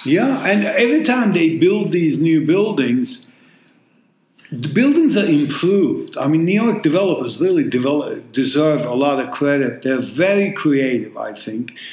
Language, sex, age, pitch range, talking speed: English, male, 50-69, 165-225 Hz, 145 wpm